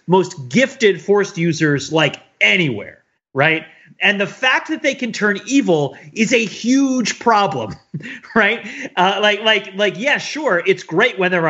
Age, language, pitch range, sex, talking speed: 30-49, English, 155-210 Hz, male, 155 wpm